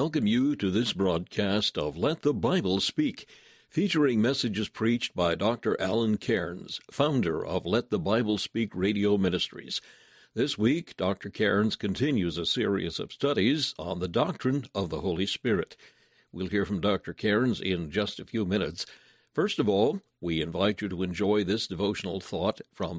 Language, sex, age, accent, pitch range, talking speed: English, male, 60-79, American, 90-115 Hz, 165 wpm